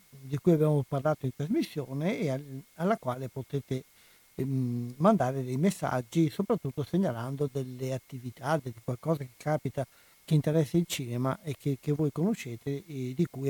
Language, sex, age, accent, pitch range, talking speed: Italian, male, 60-79, native, 130-160 Hz, 155 wpm